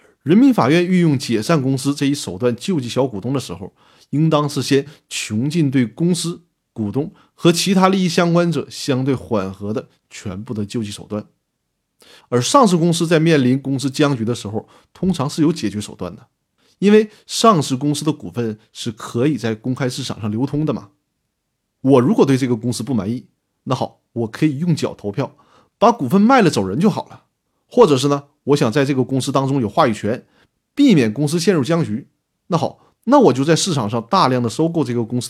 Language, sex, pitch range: Chinese, male, 115-170 Hz